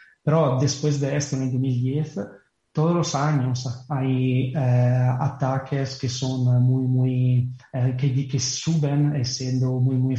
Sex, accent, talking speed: male, Italian, 140 wpm